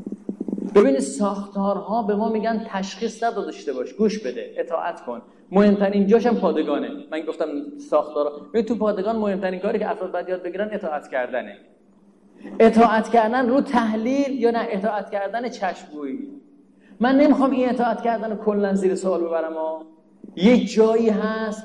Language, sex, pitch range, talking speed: Persian, male, 200-240 Hz, 150 wpm